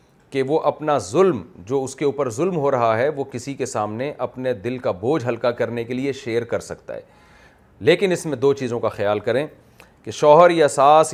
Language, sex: Urdu, male